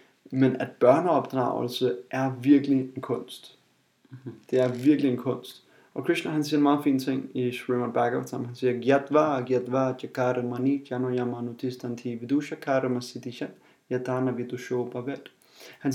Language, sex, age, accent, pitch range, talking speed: Danish, male, 30-49, native, 125-145 Hz, 105 wpm